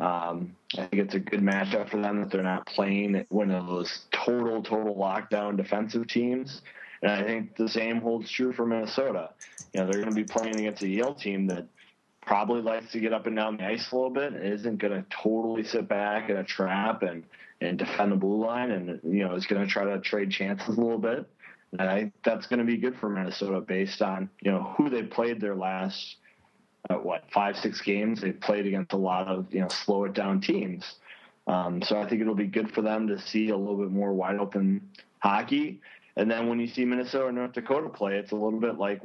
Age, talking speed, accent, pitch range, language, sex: 20-39, 230 wpm, American, 100-115 Hz, English, male